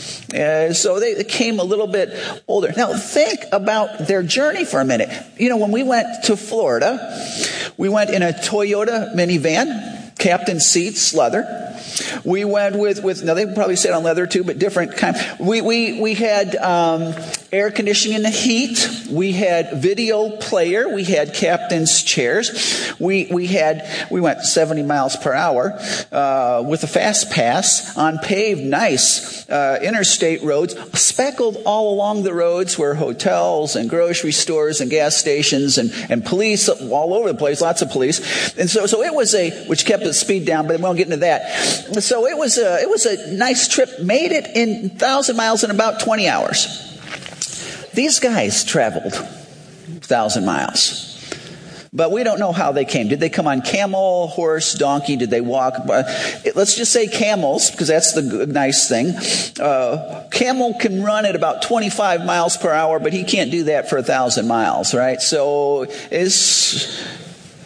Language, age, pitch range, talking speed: English, 50-69, 160-225 Hz, 175 wpm